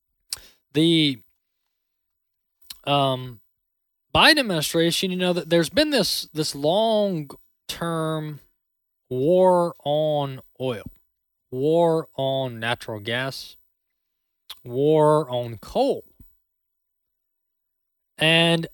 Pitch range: 130-185 Hz